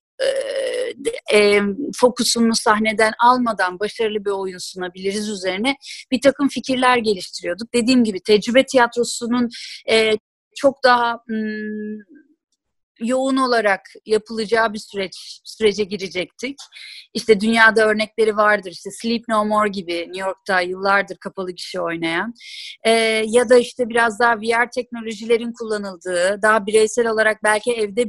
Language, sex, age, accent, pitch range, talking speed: Turkish, female, 30-49, native, 215-265 Hz, 115 wpm